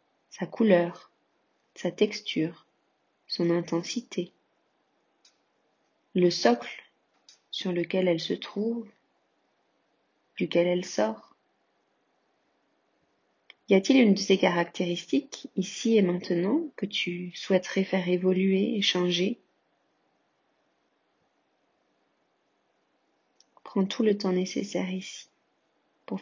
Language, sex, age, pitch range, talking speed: French, female, 30-49, 180-205 Hz, 90 wpm